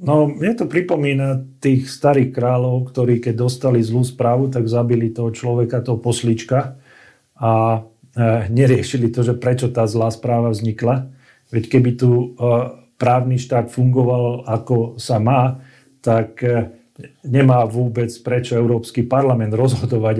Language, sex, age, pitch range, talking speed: Slovak, male, 40-59, 115-130 Hz, 135 wpm